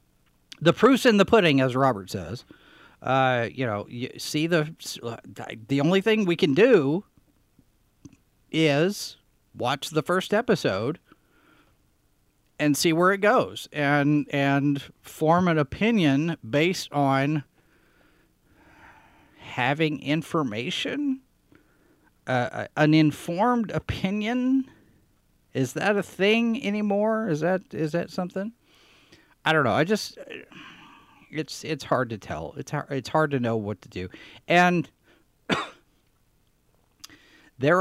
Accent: American